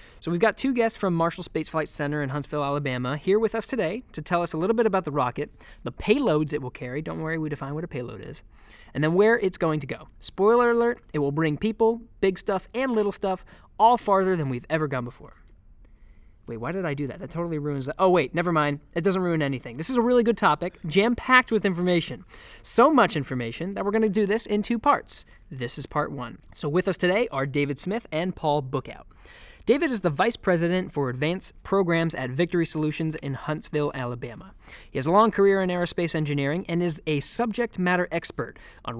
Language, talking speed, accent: English, 225 wpm, American